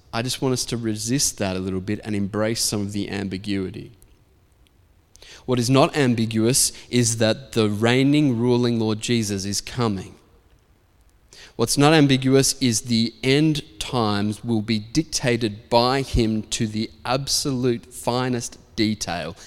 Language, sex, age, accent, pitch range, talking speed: English, male, 20-39, Australian, 100-125 Hz, 140 wpm